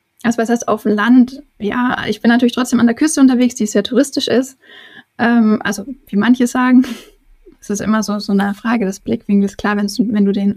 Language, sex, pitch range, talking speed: German, female, 210-250 Hz, 210 wpm